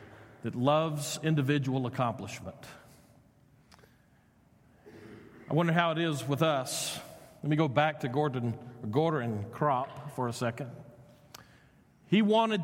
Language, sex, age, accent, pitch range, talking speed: English, male, 50-69, American, 145-200 Hz, 115 wpm